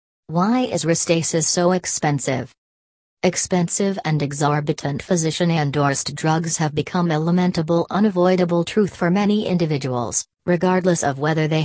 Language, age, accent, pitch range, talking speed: English, 40-59, American, 145-180 Hz, 120 wpm